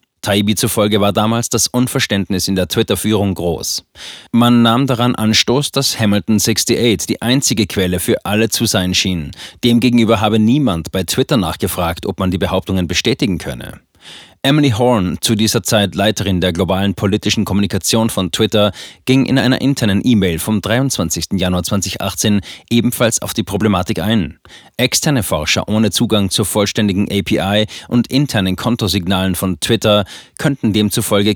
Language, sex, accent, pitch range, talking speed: German, male, German, 95-115 Hz, 145 wpm